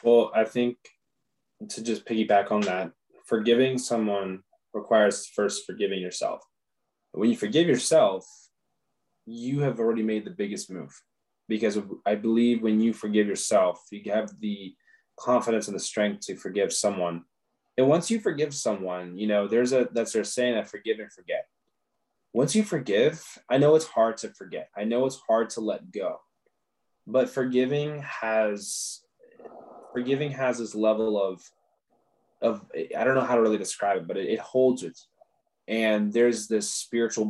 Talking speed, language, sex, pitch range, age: 160 wpm, English, male, 105-135 Hz, 20-39